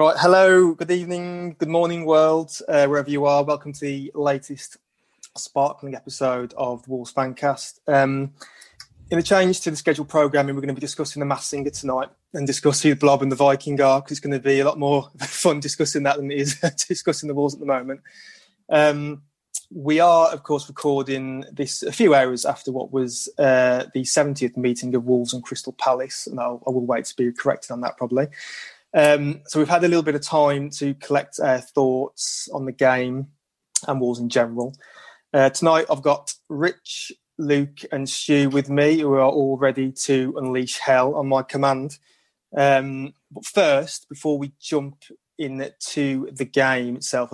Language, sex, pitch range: English, male, 130-150 Hz